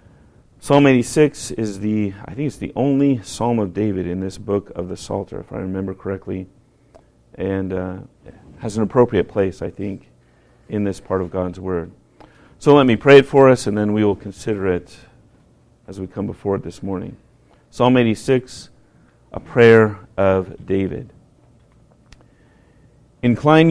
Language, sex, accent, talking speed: English, male, American, 160 wpm